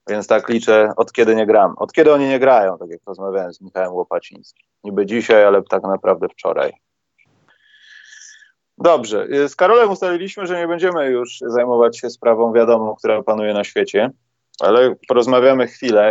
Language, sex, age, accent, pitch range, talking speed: Polish, male, 20-39, native, 105-135 Hz, 160 wpm